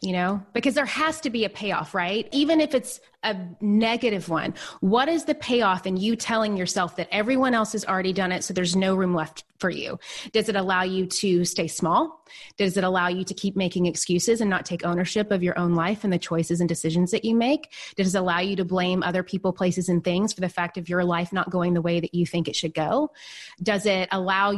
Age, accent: 30-49, American